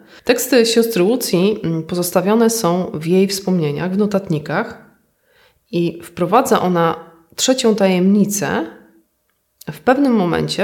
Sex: female